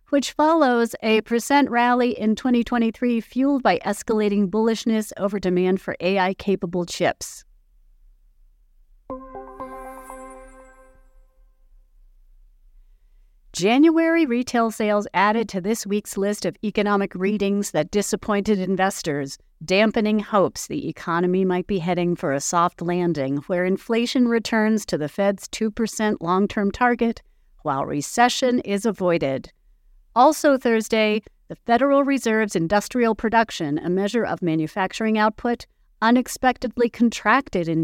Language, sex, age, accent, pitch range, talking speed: English, female, 50-69, American, 185-240 Hz, 110 wpm